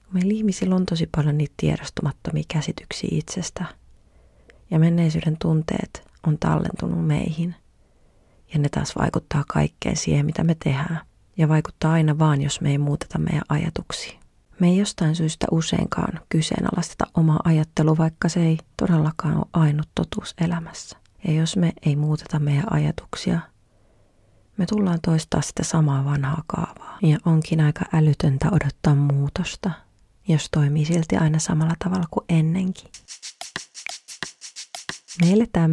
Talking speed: 135 wpm